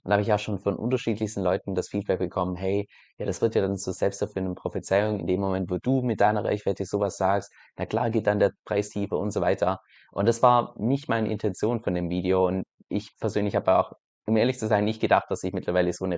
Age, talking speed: 20-39, 245 wpm